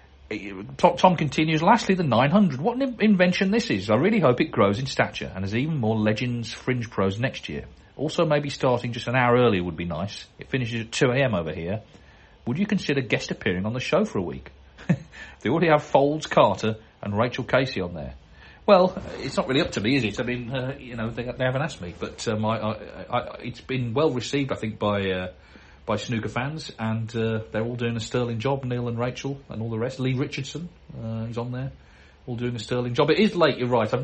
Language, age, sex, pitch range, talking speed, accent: English, 40-59, male, 95-130 Hz, 230 wpm, British